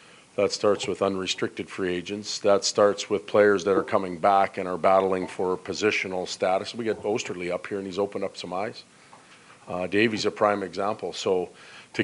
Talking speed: 190 wpm